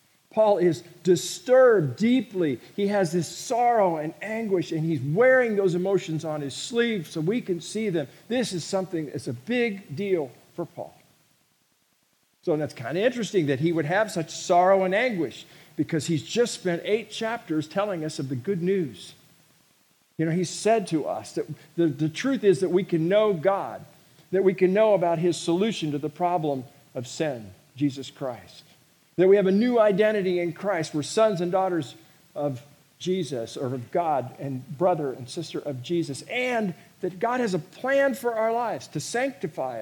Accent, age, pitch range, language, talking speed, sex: American, 50-69, 155-210 Hz, English, 185 wpm, male